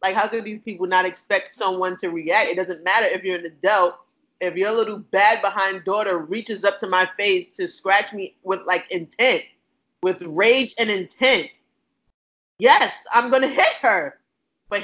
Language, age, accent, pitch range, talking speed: English, 20-39, American, 175-230 Hz, 180 wpm